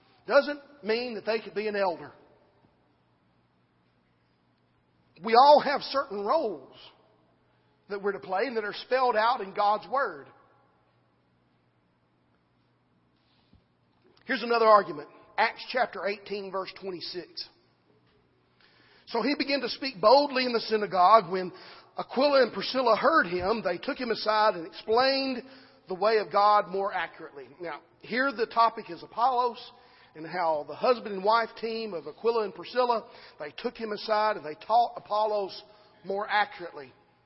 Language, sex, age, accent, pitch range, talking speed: English, male, 40-59, American, 155-235 Hz, 140 wpm